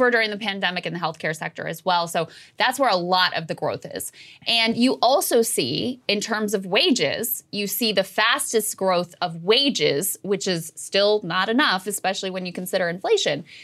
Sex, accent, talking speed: female, American, 190 wpm